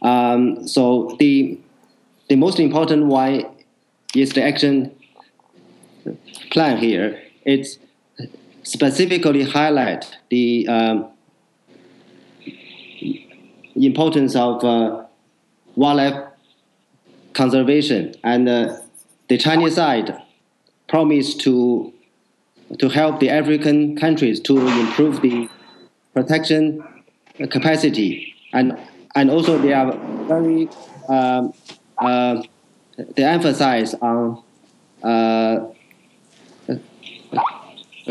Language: English